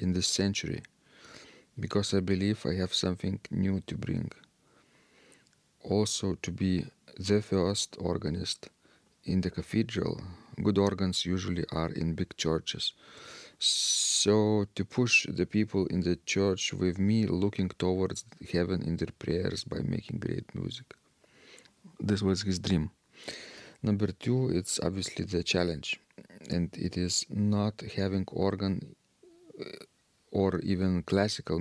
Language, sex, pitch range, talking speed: English, male, 90-105 Hz, 125 wpm